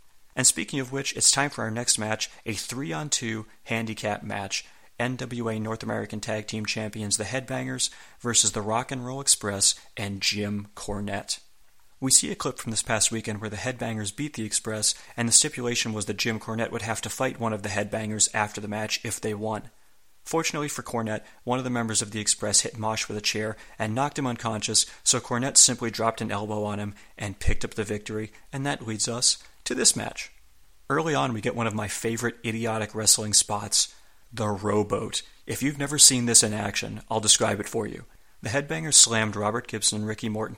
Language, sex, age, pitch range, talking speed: English, male, 30-49, 105-125 Hz, 205 wpm